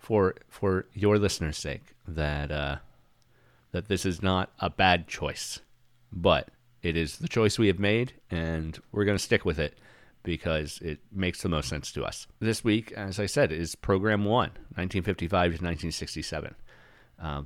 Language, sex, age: English, male, 40-59